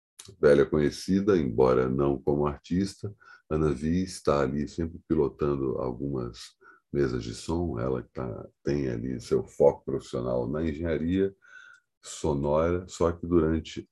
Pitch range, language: 65-85 Hz, Portuguese